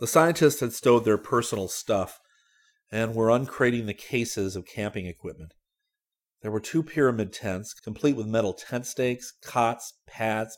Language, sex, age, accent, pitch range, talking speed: English, male, 40-59, American, 90-115 Hz, 155 wpm